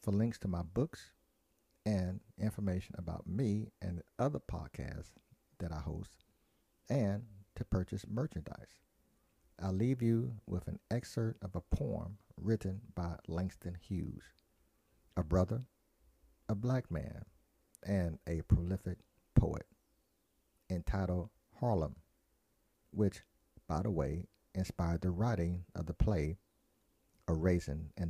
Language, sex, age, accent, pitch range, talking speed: English, male, 50-69, American, 85-105 Hz, 120 wpm